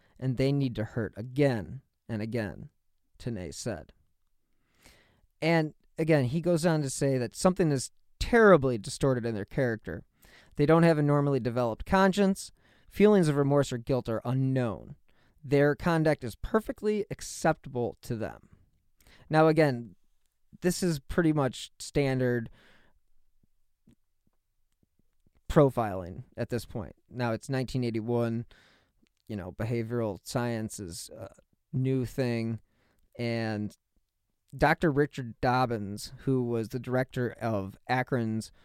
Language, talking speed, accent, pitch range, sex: English, 120 wpm, American, 115-145 Hz, male